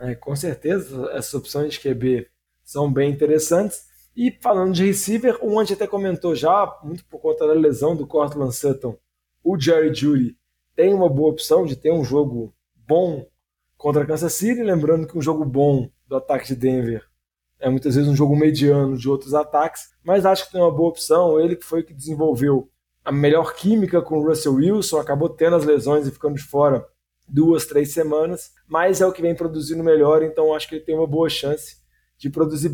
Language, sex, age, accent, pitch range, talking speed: Portuguese, male, 20-39, Brazilian, 145-175 Hz, 200 wpm